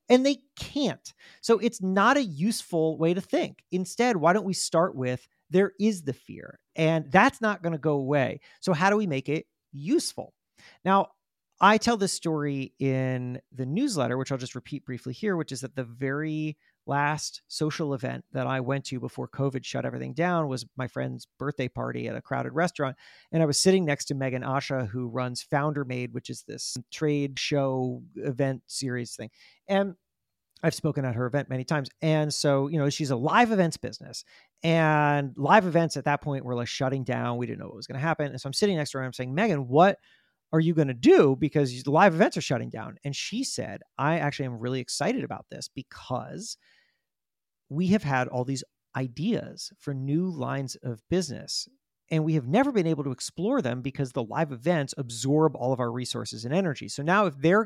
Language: English